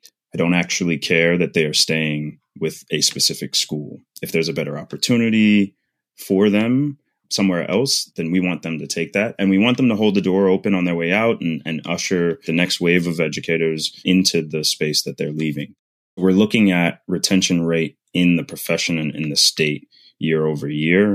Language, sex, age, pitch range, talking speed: English, male, 30-49, 80-95 Hz, 195 wpm